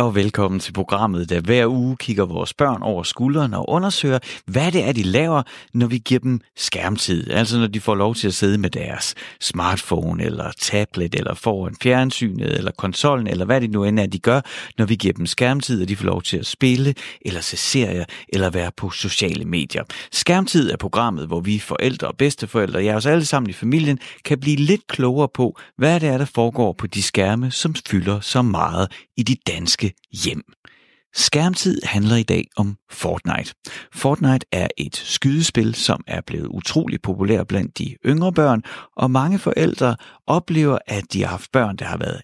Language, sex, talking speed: Danish, male, 195 wpm